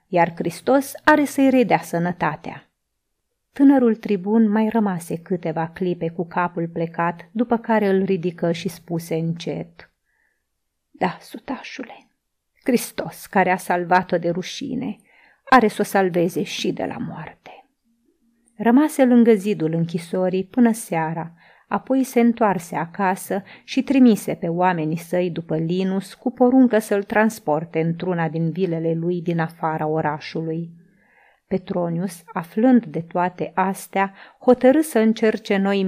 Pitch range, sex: 170-230 Hz, female